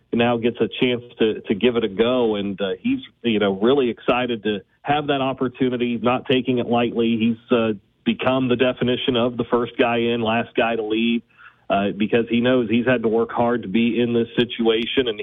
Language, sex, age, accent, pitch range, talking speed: English, male, 40-59, American, 115-125 Hz, 215 wpm